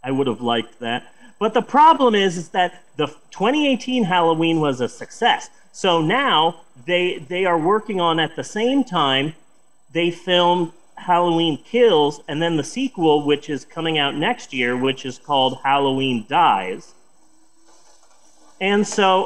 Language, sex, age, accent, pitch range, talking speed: English, male, 30-49, American, 150-220 Hz, 155 wpm